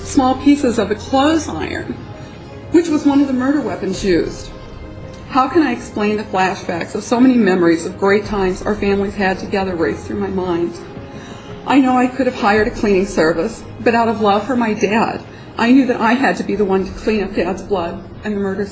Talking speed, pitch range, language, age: 220 wpm, 200-255 Hz, English, 40-59